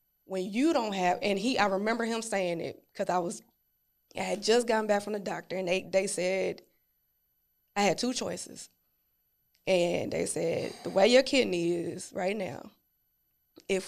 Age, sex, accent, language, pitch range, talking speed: 20-39, female, American, English, 180-225 Hz, 175 wpm